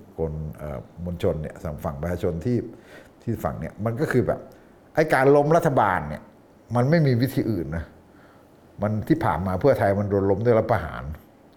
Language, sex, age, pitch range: Thai, male, 60-79, 90-125 Hz